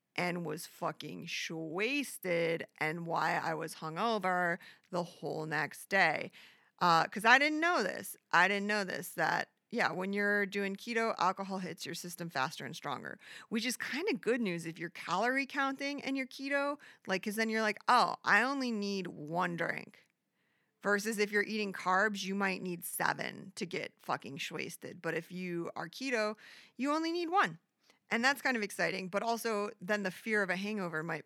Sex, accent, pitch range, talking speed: female, American, 170-215 Hz, 185 wpm